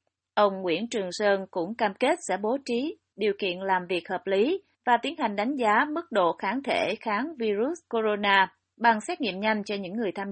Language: Vietnamese